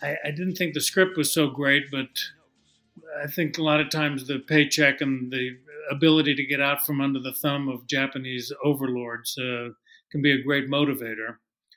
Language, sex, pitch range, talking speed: English, male, 135-160 Hz, 185 wpm